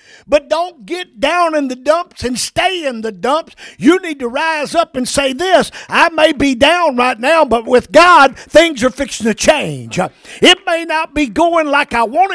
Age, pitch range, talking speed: 50-69, 200-305 Hz, 205 wpm